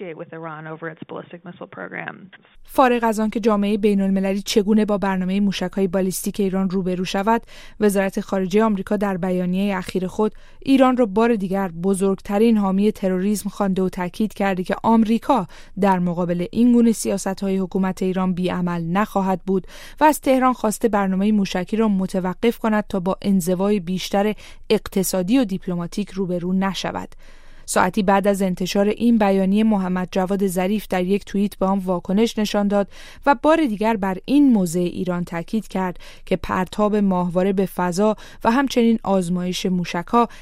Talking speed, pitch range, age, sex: 130 wpm, 180-215 Hz, 20-39, female